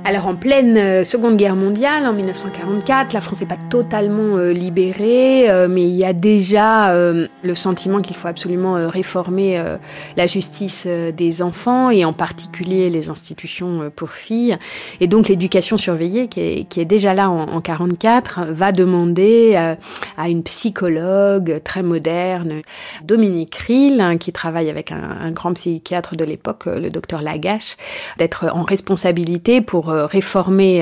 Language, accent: French, French